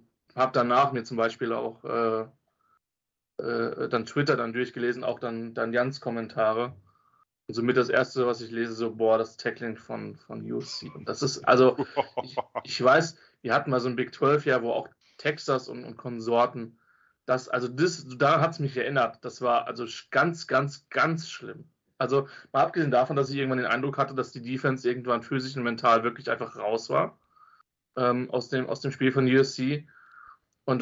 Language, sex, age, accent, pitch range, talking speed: German, male, 30-49, German, 120-145 Hz, 190 wpm